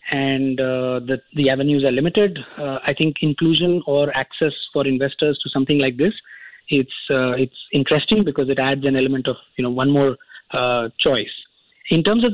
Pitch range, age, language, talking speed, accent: 140-180 Hz, 20-39, English, 185 wpm, Indian